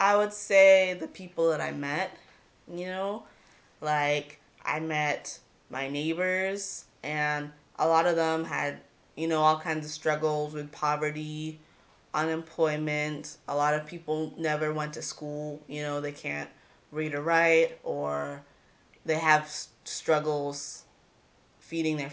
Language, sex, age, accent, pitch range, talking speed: English, female, 20-39, American, 145-165 Hz, 140 wpm